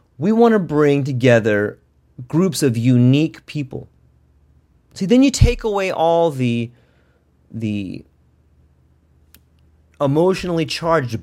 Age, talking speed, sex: 30-49, 100 wpm, male